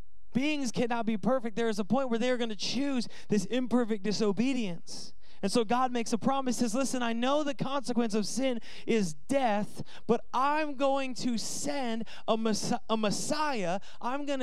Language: English